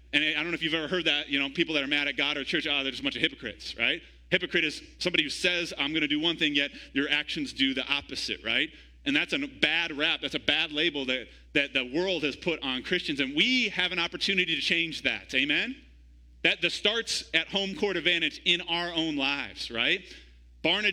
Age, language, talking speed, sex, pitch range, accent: 30-49, English, 240 wpm, male, 160-210 Hz, American